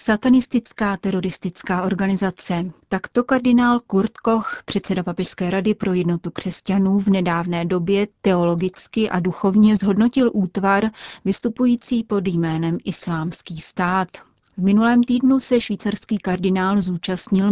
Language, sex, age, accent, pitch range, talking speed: Czech, female, 30-49, native, 180-210 Hz, 115 wpm